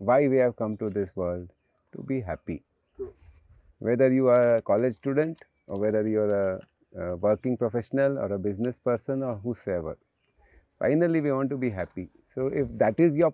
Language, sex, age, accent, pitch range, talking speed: English, male, 30-49, Indian, 110-145 Hz, 185 wpm